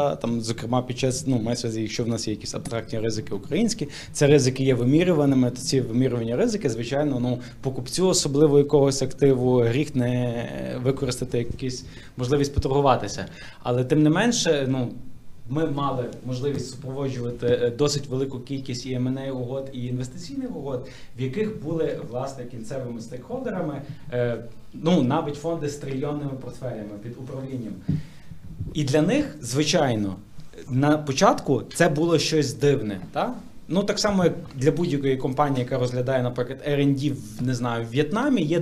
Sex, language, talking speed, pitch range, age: male, Ukrainian, 145 wpm, 125-150 Hz, 20-39